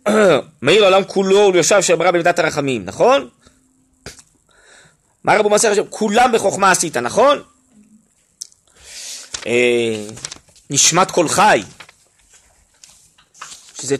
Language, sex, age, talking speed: Hebrew, male, 30-49, 85 wpm